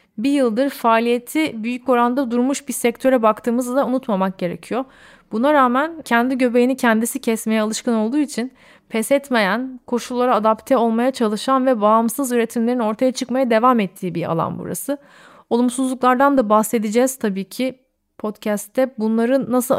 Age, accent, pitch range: 30-49, native, 220-255 Hz